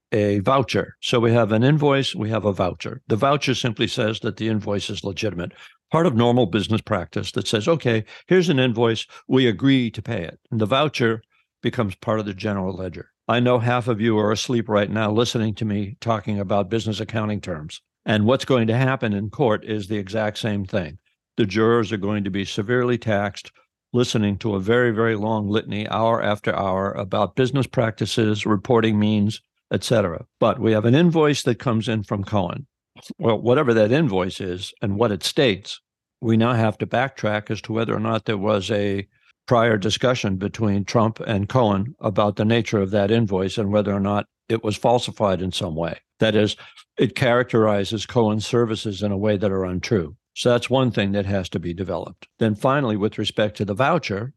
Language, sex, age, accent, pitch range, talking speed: English, male, 60-79, American, 105-120 Hz, 200 wpm